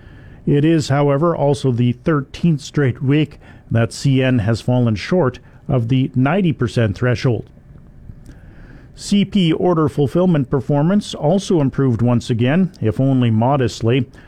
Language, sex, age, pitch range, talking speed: English, male, 50-69, 120-145 Hz, 120 wpm